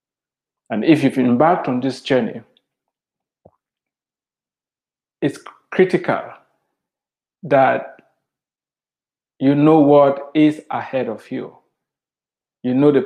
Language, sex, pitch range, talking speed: English, male, 125-160 Hz, 90 wpm